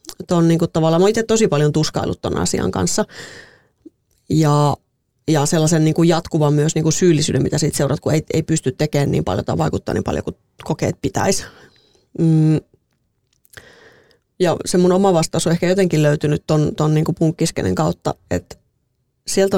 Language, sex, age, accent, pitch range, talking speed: Finnish, female, 30-49, native, 150-175 Hz, 165 wpm